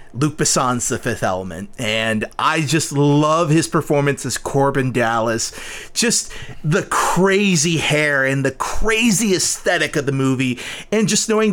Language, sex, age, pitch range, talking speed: English, male, 30-49, 130-170 Hz, 145 wpm